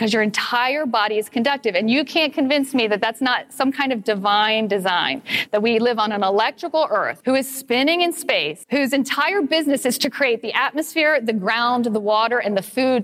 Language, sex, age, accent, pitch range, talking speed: English, female, 40-59, American, 215-275 Hz, 205 wpm